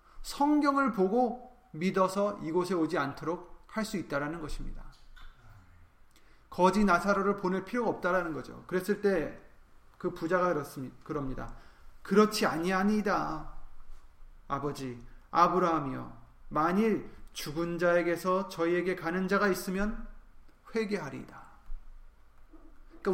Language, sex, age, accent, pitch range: Korean, male, 30-49, native, 140-205 Hz